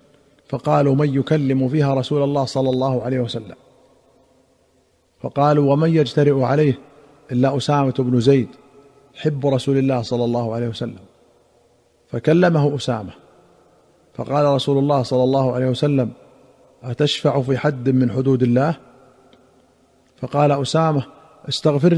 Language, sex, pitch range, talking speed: Arabic, male, 130-155 Hz, 115 wpm